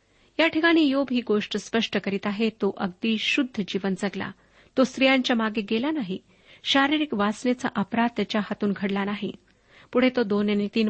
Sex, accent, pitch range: female, native, 205-255 Hz